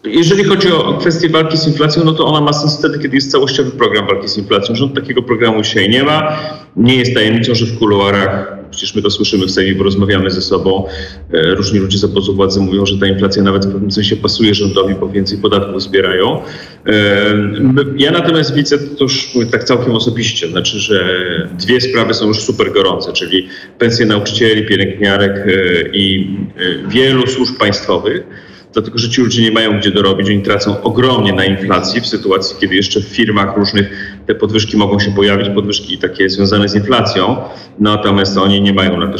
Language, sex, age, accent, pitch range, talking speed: Polish, male, 40-59, native, 100-125 Hz, 185 wpm